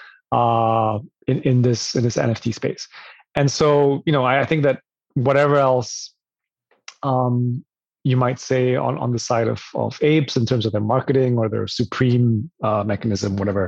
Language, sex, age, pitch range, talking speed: English, male, 30-49, 115-140 Hz, 175 wpm